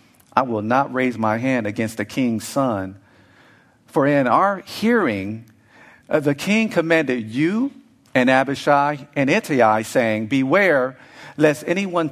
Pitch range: 115-155 Hz